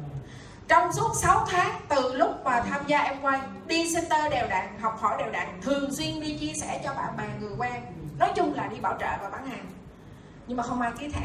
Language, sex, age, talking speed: Vietnamese, female, 20-39, 235 wpm